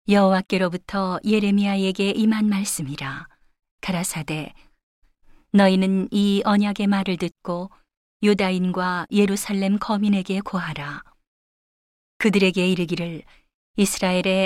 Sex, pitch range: female, 175-205 Hz